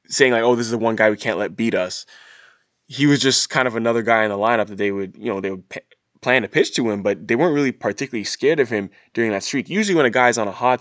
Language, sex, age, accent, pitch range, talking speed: English, male, 20-39, American, 105-125 Hz, 295 wpm